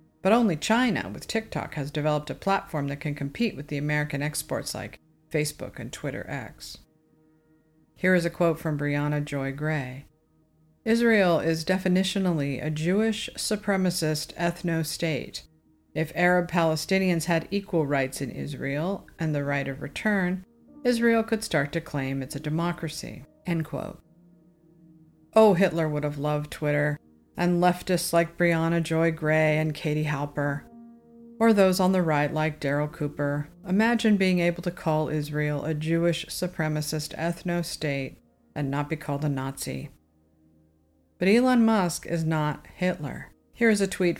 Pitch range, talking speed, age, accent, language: 145-180 Hz, 150 wpm, 50-69, American, English